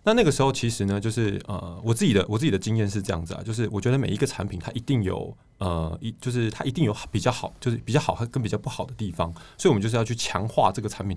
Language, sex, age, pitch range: Chinese, male, 20-39, 95-120 Hz